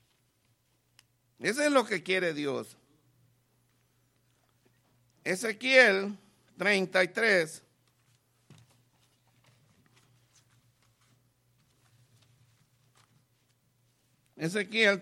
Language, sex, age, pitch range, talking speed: English, male, 60-79, 125-200 Hz, 45 wpm